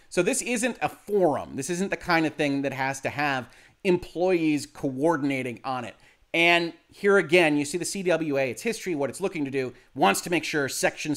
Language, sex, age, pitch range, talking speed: English, male, 30-49, 135-180 Hz, 205 wpm